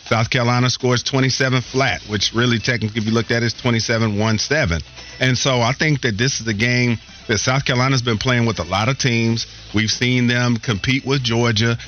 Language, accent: English, American